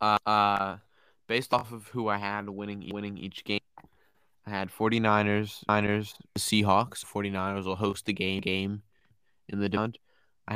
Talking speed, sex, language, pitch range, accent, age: 160 wpm, male, English, 100-110 Hz, American, 20-39